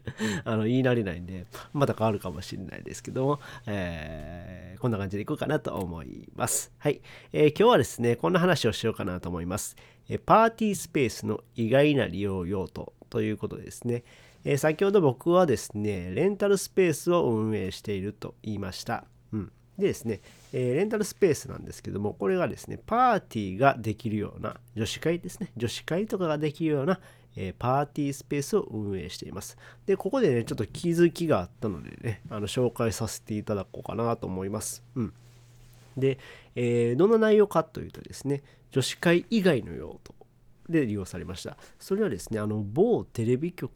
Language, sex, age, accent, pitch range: Japanese, male, 40-59, native, 105-155 Hz